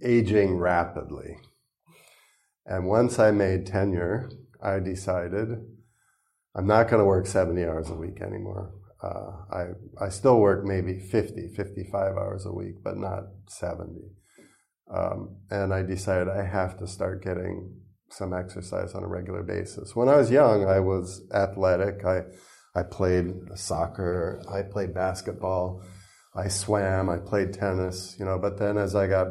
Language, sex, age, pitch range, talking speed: English, male, 40-59, 95-105 Hz, 150 wpm